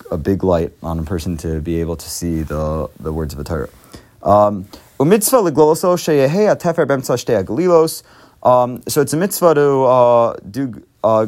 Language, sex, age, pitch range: English, male, 30-49, 105-135 Hz